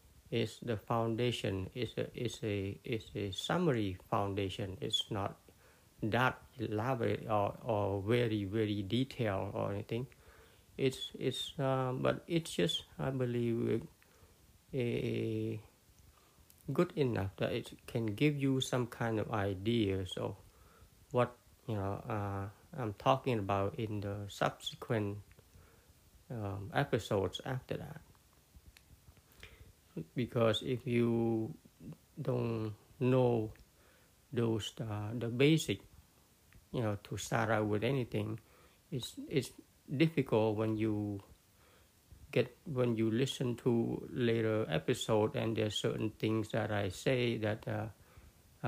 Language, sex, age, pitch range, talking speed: English, male, 60-79, 100-125 Hz, 120 wpm